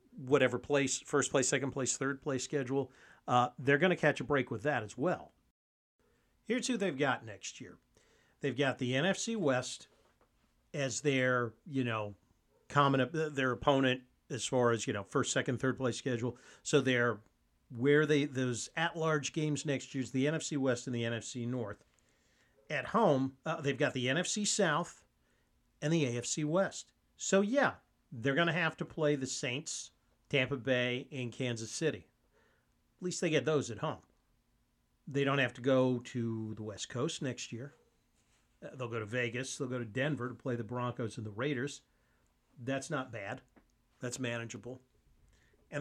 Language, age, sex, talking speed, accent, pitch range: English, 50-69, male, 175 wpm, American, 120-150 Hz